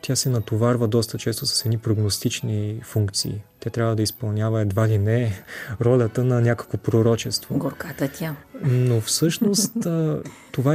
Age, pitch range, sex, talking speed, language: 30-49, 110-135 Hz, male, 140 wpm, Bulgarian